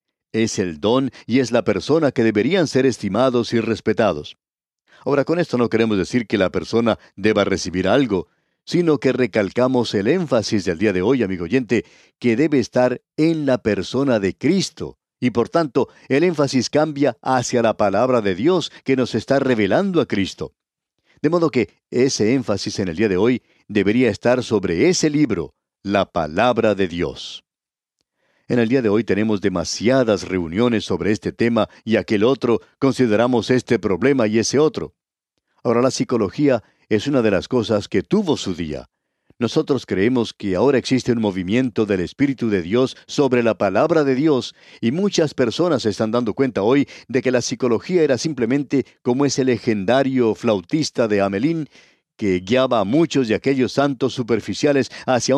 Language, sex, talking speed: Spanish, male, 170 wpm